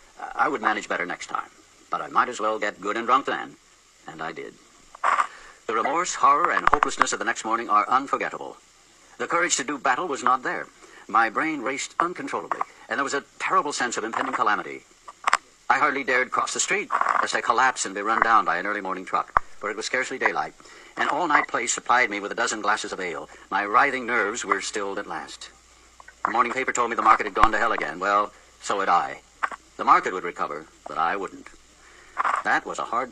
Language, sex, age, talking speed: English, male, 60-79, 215 wpm